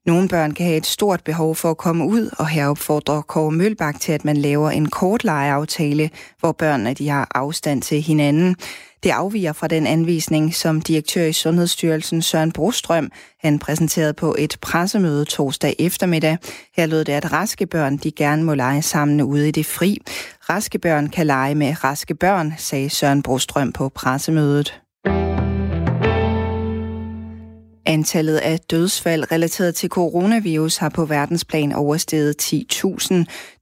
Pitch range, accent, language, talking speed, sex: 145-165 Hz, native, Danish, 150 wpm, female